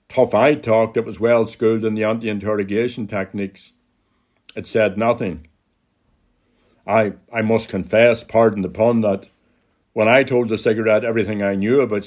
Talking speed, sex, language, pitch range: 150 wpm, male, English, 100-115 Hz